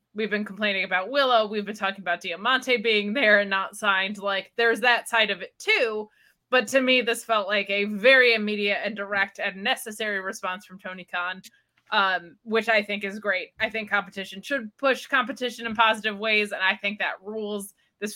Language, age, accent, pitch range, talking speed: English, 20-39, American, 195-230 Hz, 200 wpm